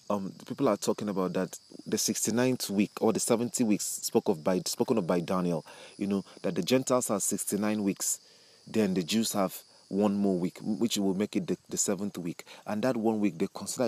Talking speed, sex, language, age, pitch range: 220 wpm, male, English, 30-49, 95-110 Hz